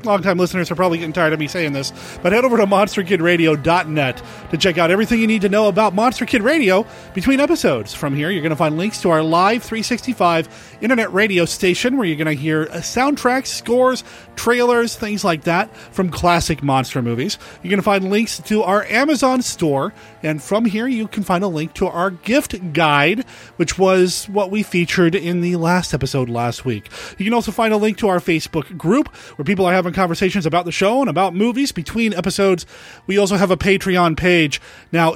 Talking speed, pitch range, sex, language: 205 wpm, 155-205 Hz, male, English